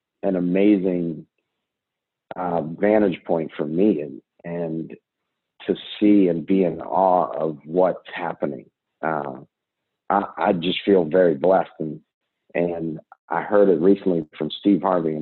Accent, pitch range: American, 80-95 Hz